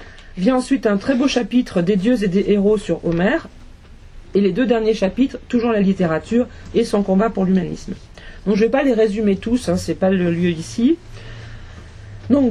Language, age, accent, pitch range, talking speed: French, 40-59, French, 180-230 Hz, 200 wpm